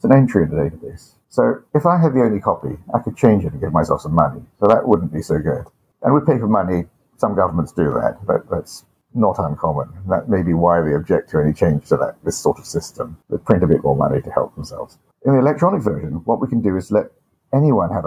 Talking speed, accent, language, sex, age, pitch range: 250 wpm, British, English, male, 50-69, 85-120 Hz